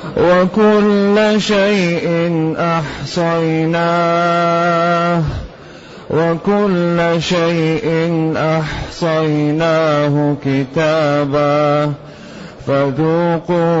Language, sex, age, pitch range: Arabic, male, 30-49, 150-170 Hz